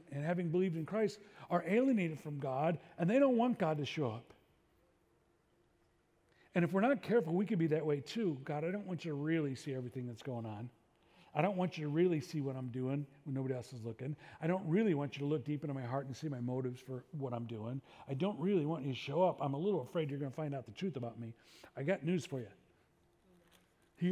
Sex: male